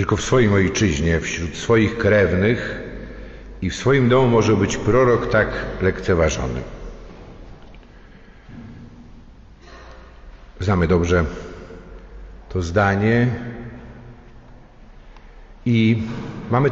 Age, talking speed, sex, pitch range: 50-69, 80 wpm, male, 95-115 Hz